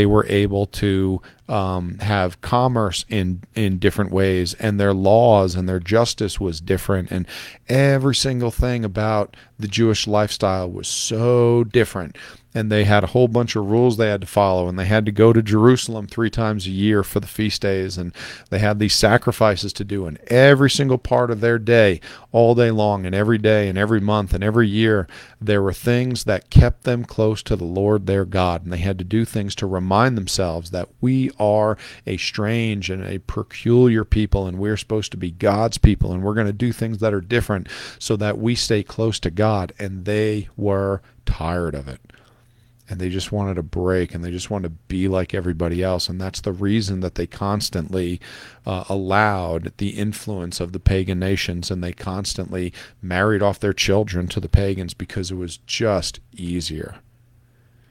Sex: male